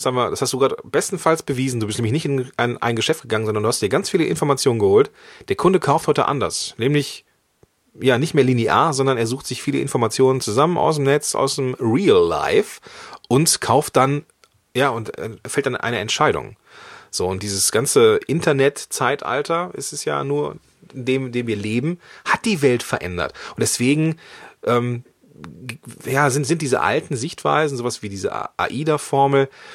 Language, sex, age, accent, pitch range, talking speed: German, male, 30-49, German, 120-160 Hz, 180 wpm